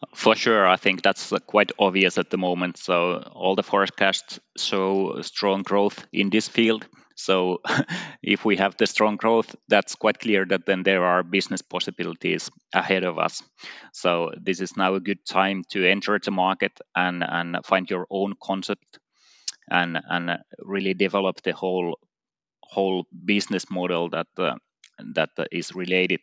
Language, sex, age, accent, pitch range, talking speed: English, male, 20-39, Finnish, 95-100 Hz, 160 wpm